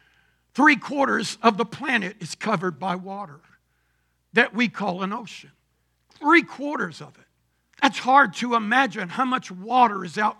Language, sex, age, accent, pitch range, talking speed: English, male, 60-79, American, 230-295 Hz, 155 wpm